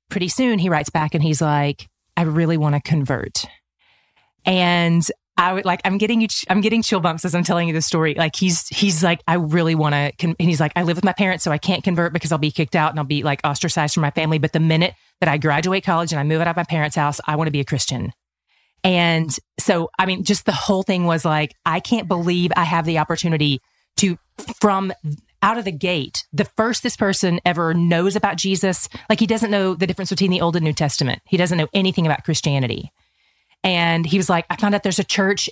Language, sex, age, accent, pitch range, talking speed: English, female, 30-49, American, 155-185 Hz, 245 wpm